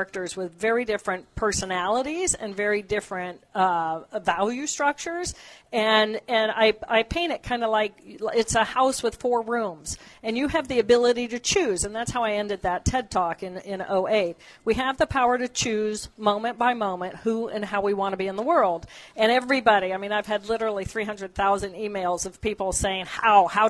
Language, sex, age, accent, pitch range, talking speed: English, female, 50-69, American, 190-230 Hz, 195 wpm